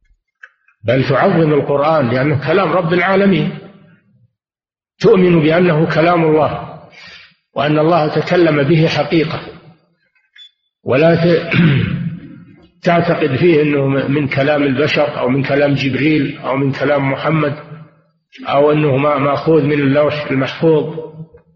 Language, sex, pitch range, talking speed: Arabic, male, 135-160 Hz, 105 wpm